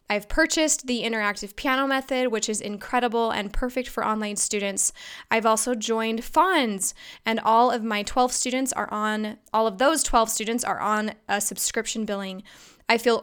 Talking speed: 170 wpm